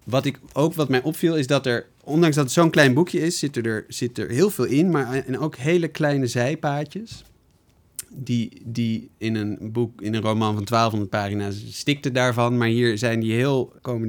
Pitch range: 105-135 Hz